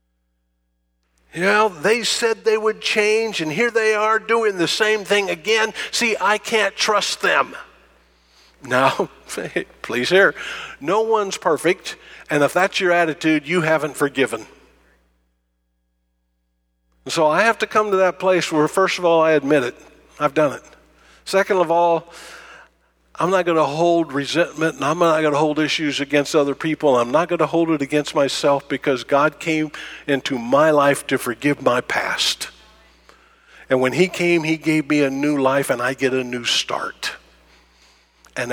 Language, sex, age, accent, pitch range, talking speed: English, male, 50-69, American, 105-175 Hz, 170 wpm